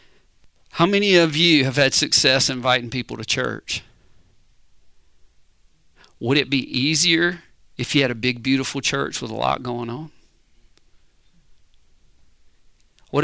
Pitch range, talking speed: 110-165 Hz, 125 wpm